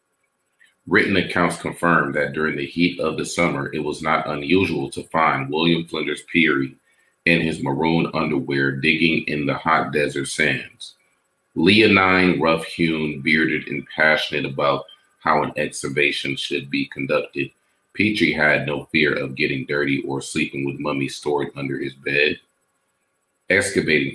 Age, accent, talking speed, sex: 40-59, American, 140 wpm, male